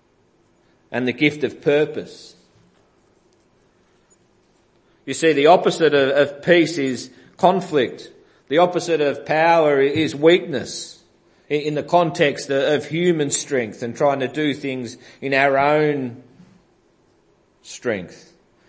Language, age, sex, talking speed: English, 40-59, male, 120 wpm